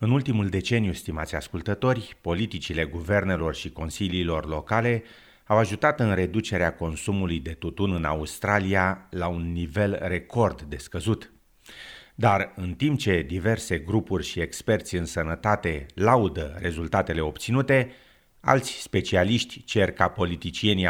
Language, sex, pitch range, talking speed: Romanian, male, 85-110 Hz, 125 wpm